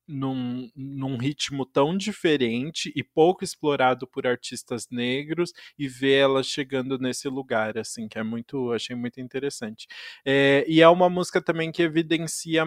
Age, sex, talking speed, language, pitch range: 20-39, male, 150 wpm, Portuguese, 125-140 Hz